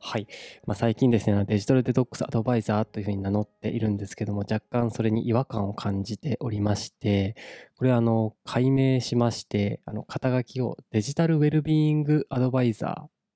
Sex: male